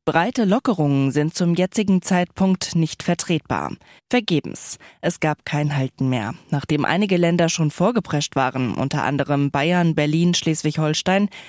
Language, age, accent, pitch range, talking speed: German, 20-39, German, 155-210 Hz, 130 wpm